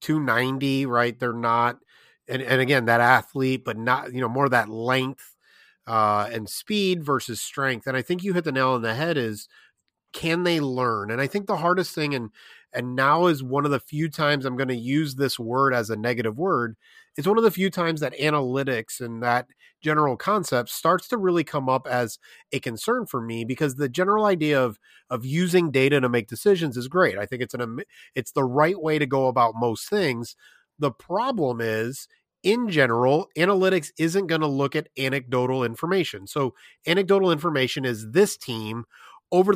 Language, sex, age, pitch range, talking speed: English, male, 30-49, 125-165 Hz, 195 wpm